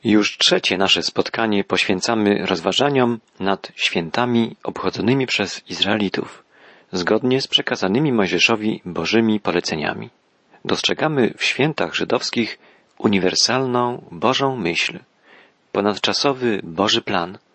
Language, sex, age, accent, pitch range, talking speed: Polish, male, 40-59, native, 95-120 Hz, 90 wpm